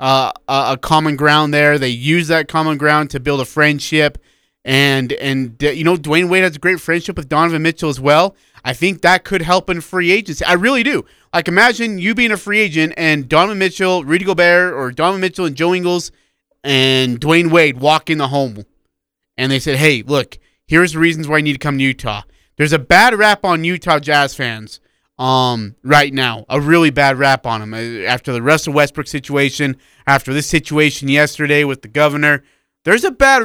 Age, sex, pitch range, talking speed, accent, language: 30-49, male, 130-170 Hz, 205 wpm, American, English